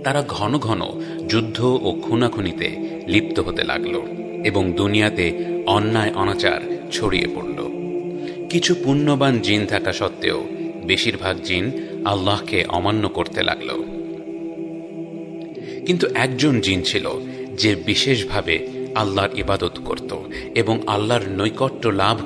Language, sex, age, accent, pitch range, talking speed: Bengali, male, 30-49, native, 95-135 Hz, 110 wpm